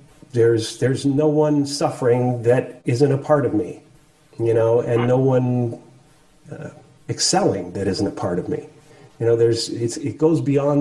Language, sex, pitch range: English, male, 140-155 Hz